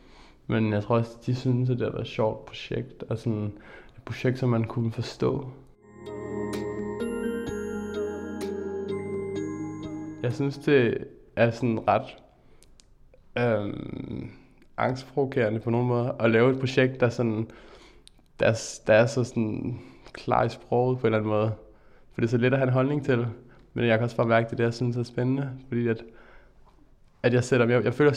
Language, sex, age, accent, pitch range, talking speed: Danish, male, 20-39, native, 115-130 Hz, 175 wpm